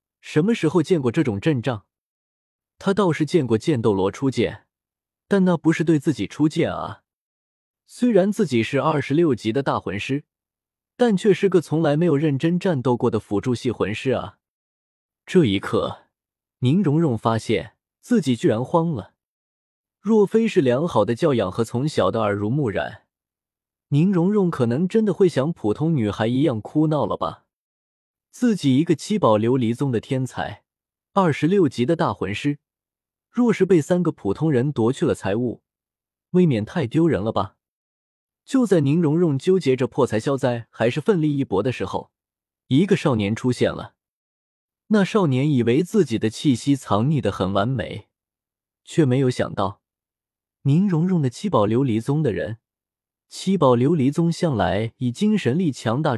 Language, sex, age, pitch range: Chinese, male, 20-39, 115-170 Hz